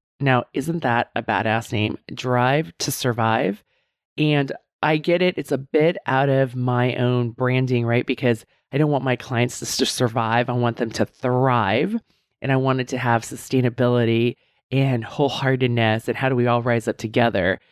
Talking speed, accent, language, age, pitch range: 175 wpm, American, English, 20-39, 120-145 Hz